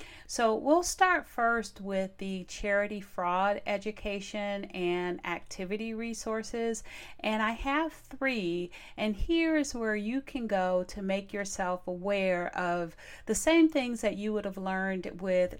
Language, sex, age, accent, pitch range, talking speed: English, female, 40-59, American, 175-215 Hz, 140 wpm